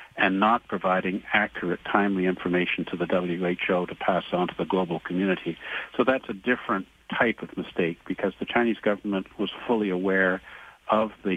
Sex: male